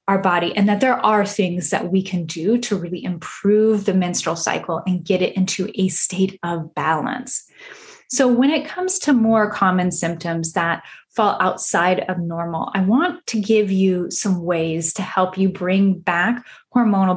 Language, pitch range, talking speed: English, 180-225 Hz, 180 wpm